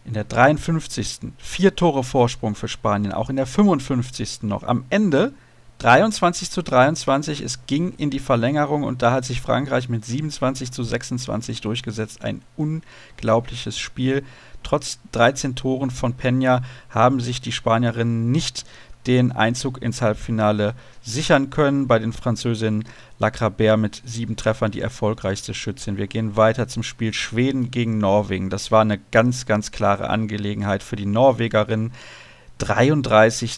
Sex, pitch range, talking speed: male, 110-130 Hz, 145 wpm